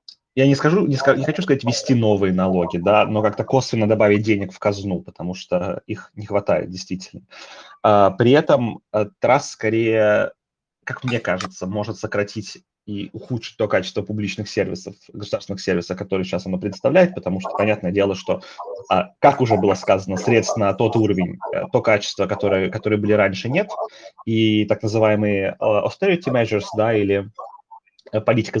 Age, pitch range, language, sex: 20-39, 100-115 Hz, Russian, male